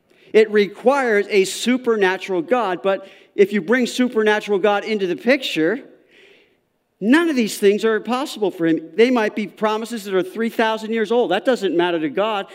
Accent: American